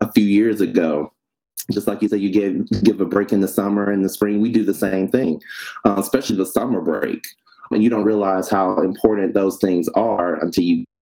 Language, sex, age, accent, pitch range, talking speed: English, male, 30-49, American, 100-120 Hz, 230 wpm